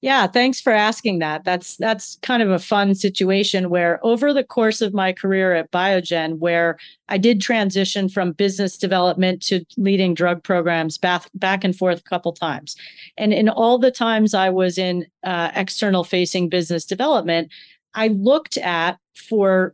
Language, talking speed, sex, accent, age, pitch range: English, 175 wpm, female, American, 40-59, 175-210 Hz